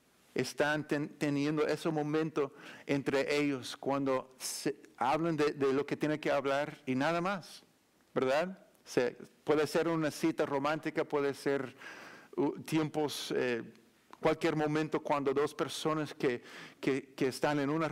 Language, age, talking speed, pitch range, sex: Spanish, 50-69, 125 wpm, 140-160 Hz, male